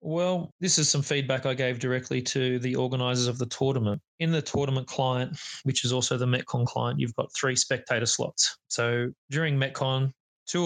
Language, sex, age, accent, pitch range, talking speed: English, male, 20-39, Australian, 120-140 Hz, 185 wpm